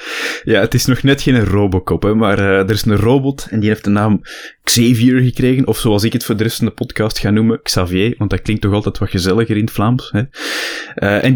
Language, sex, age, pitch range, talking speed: Dutch, male, 20-39, 95-120 Hz, 250 wpm